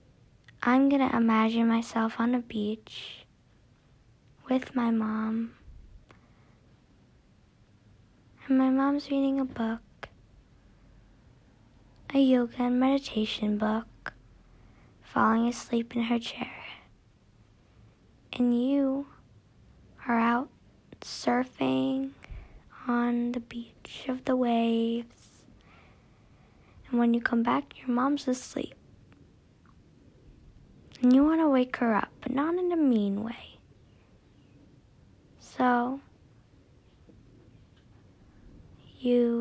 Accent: American